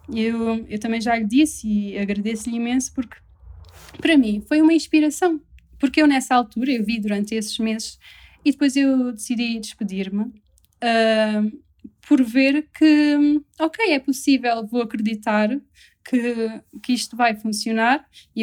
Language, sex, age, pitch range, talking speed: Portuguese, female, 20-39, 215-260 Hz, 145 wpm